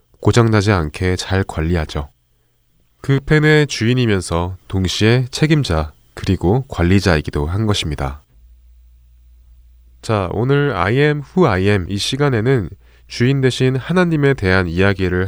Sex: male